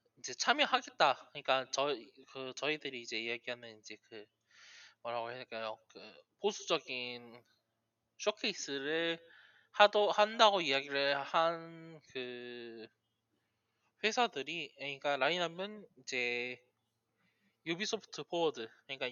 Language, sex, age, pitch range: Korean, male, 20-39, 130-200 Hz